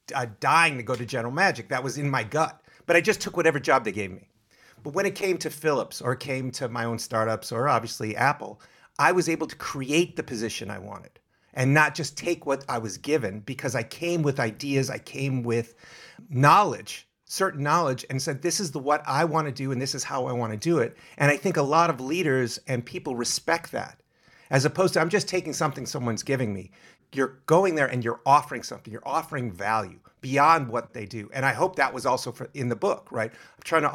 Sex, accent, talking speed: male, American, 230 wpm